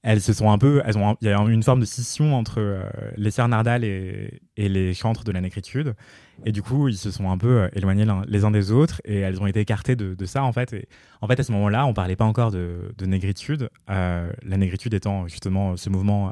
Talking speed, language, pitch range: 255 wpm, French, 100-125 Hz